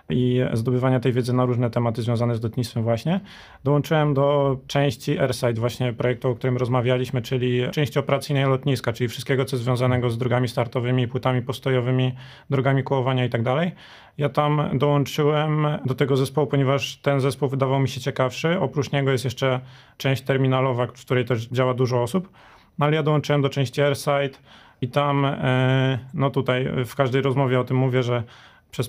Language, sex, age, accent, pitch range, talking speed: Polish, male, 30-49, native, 125-140 Hz, 170 wpm